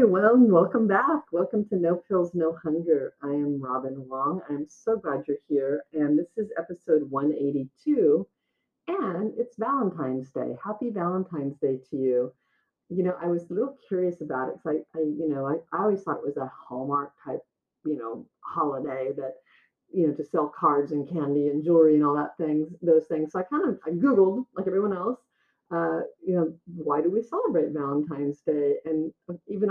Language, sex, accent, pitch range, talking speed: English, female, American, 150-185 Hz, 190 wpm